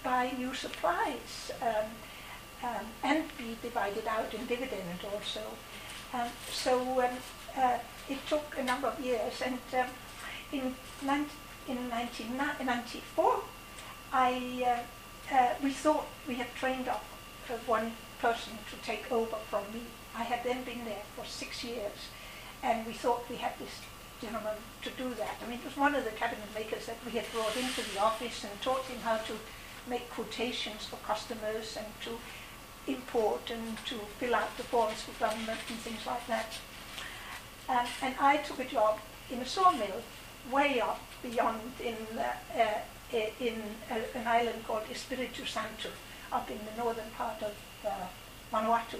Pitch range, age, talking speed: 225-255 Hz, 60-79, 165 wpm